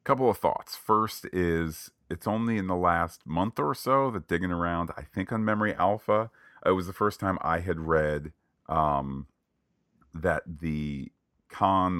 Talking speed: 165 wpm